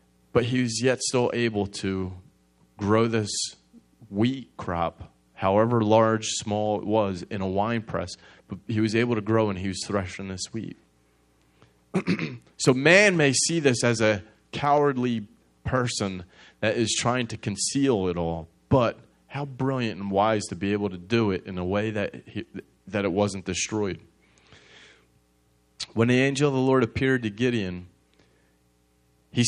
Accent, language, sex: American, English, male